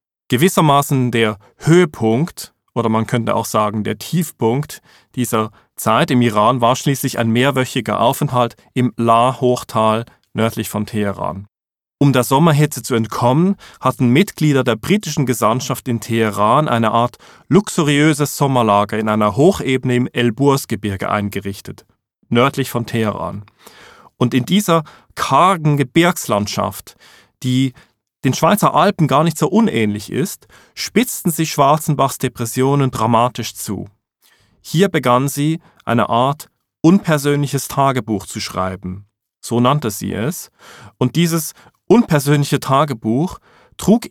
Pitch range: 115-150 Hz